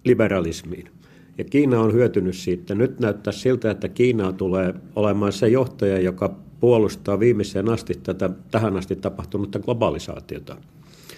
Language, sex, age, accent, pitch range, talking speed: Finnish, male, 50-69, native, 95-120 Hz, 130 wpm